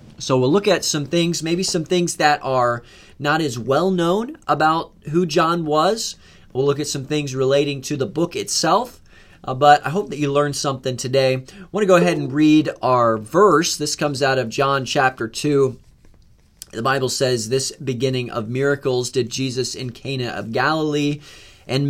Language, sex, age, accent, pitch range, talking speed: English, male, 30-49, American, 120-155 Hz, 185 wpm